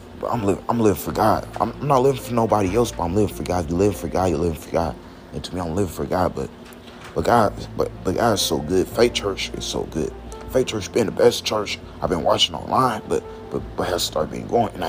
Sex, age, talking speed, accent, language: male, 30-49, 260 wpm, American, English